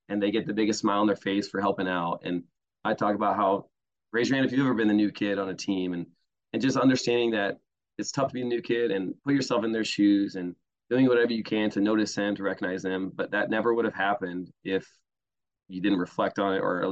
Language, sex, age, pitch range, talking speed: English, male, 20-39, 95-115 Hz, 260 wpm